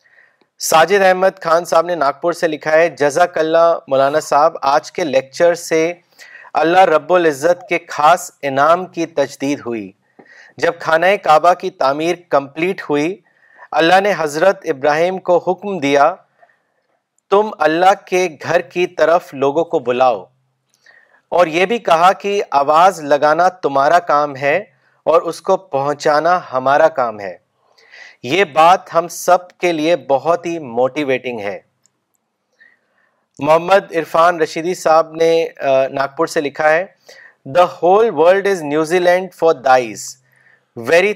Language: Urdu